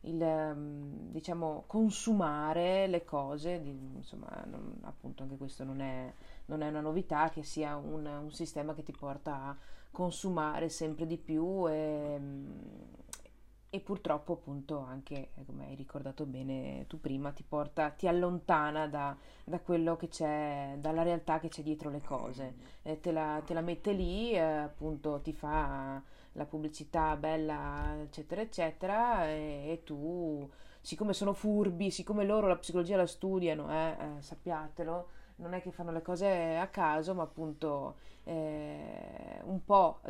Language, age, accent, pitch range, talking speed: Italian, 30-49, native, 145-170 Hz, 150 wpm